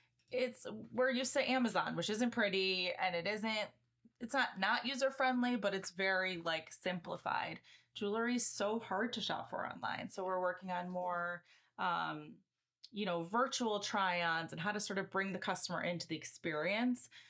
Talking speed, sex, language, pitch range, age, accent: 175 wpm, female, English, 175-215 Hz, 20-39, American